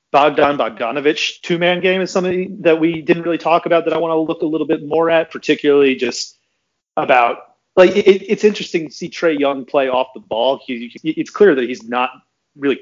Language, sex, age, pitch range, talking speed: English, male, 30-49, 120-160 Hz, 205 wpm